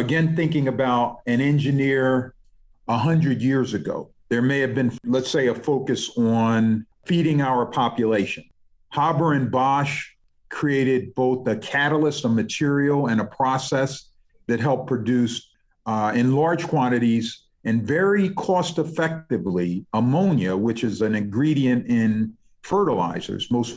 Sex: male